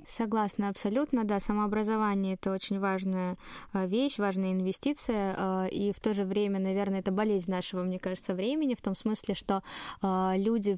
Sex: female